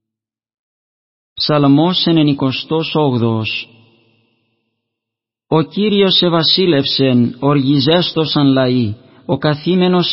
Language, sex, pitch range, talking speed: Greek, male, 140-160 Hz, 60 wpm